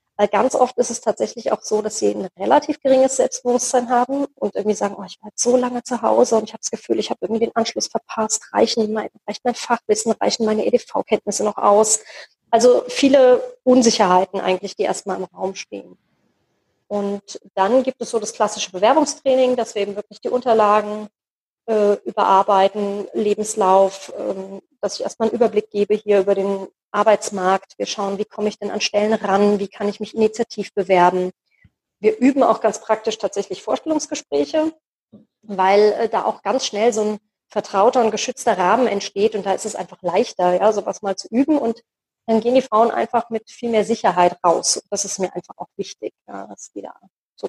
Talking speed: 190 wpm